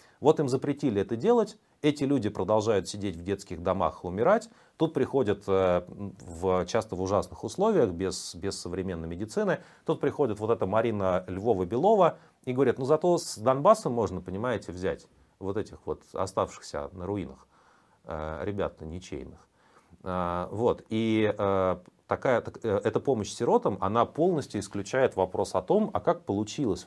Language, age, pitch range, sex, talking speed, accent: Russian, 30-49, 90-125 Hz, male, 135 wpm, native